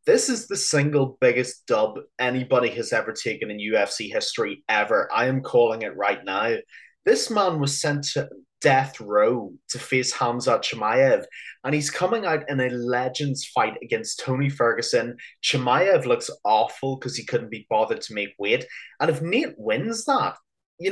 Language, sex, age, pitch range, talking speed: English, male, 20-39, 120-180 Hz, 170 wpm